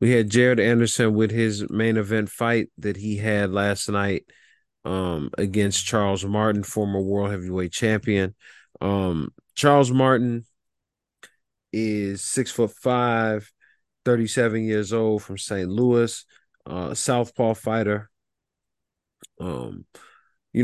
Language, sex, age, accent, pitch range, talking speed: English, male, 30-49, American, 100-115 Hz, 120 wpm